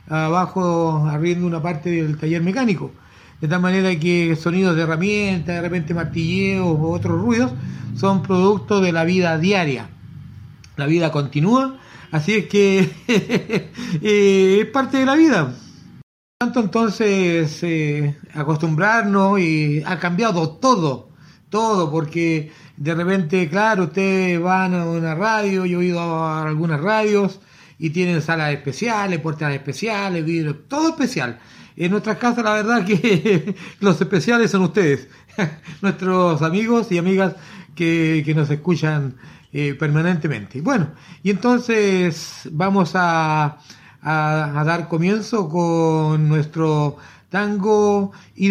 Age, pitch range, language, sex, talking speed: 40-59, 155-200 Hz, Spanish, male, 125 wpm